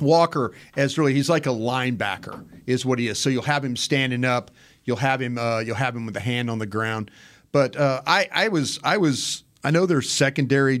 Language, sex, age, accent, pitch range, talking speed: English, male, 40-59, American, 115-140 Hz, 230 wpm